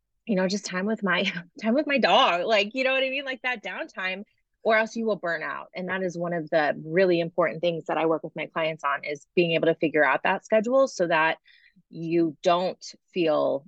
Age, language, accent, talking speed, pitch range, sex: 20-39, English, American, 235 wpm, 160-210 Hz, female